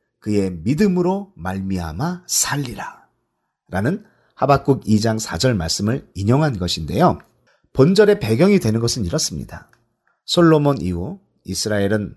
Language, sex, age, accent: Korean, male, 40-59, native